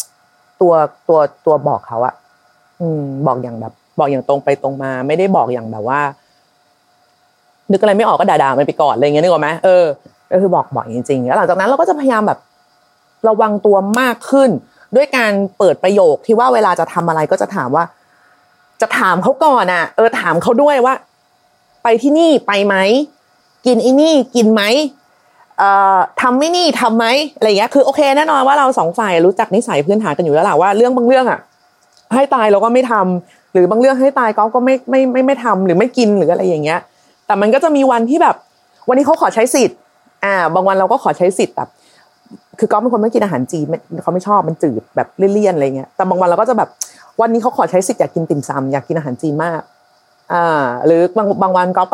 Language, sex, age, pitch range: Thai, female, 30-49, 165-250 Hz